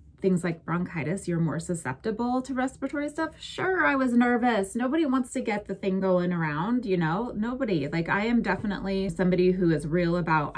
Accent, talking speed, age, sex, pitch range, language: American, 185 wpm, 20-39, female, 160-200 Hz, English